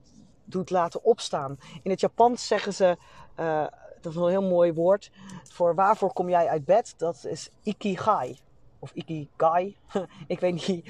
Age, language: 40-59, Dutch